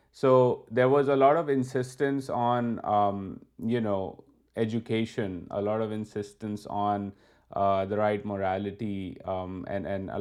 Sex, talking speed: male, 145 wpm